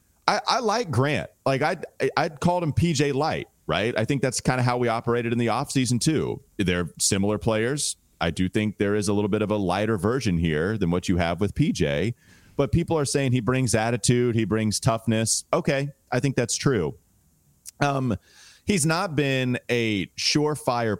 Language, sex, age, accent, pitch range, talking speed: English, male, 30-49, American, 95-135 Hz, 190 wpm